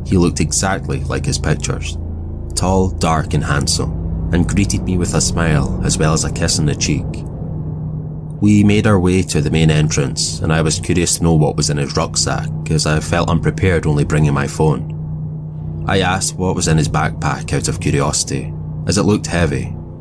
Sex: male